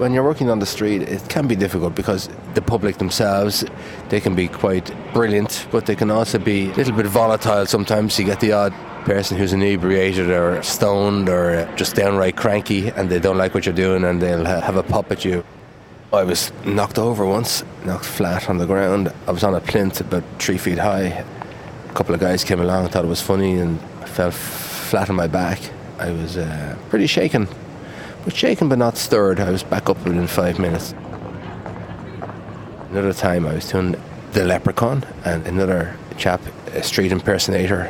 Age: 30-49